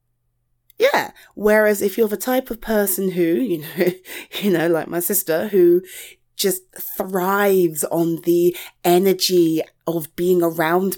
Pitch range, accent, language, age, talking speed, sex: 145-220 Hz, British, English, 30-49, 135 wpm, female